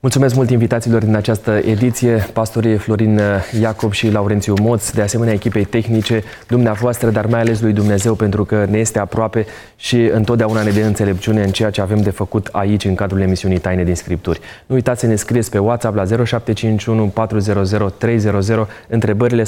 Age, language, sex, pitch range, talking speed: 20-39, Romanian, male, 105-120 Hz, 170 wpm